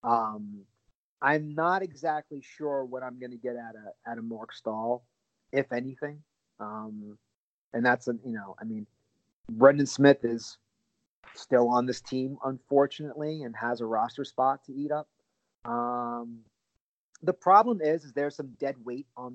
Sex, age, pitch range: male, 30-49, 115-140 Hz